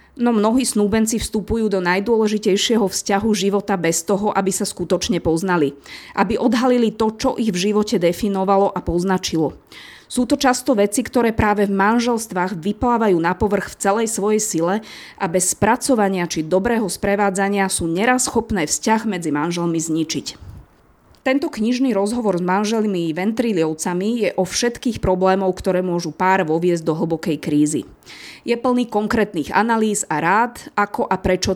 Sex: female